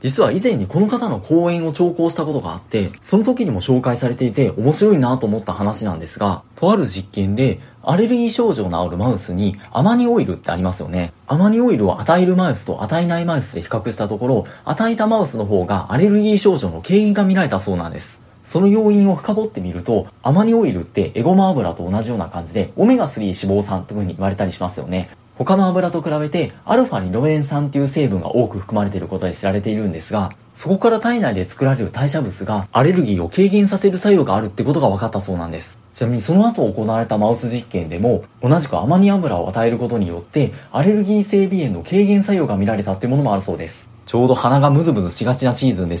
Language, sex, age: Japanese, male, 30-49